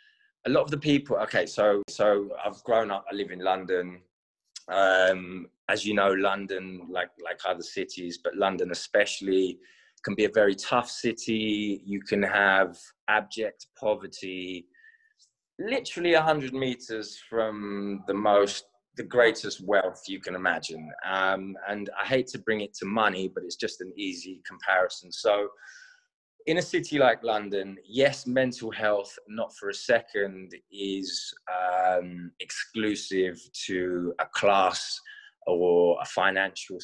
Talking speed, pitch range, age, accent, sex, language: 140 wpm, 95-120 Hz, 20-39, British, male, Italian